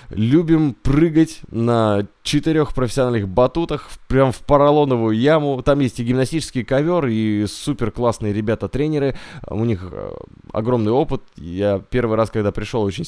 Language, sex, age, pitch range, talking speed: Russian, male, 20-39, 105-145 Hz, 135 wpm